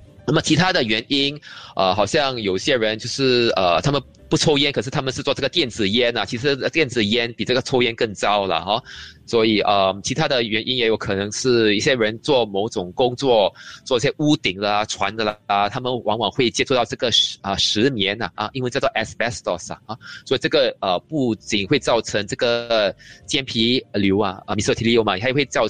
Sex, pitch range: male, 100-125 Hz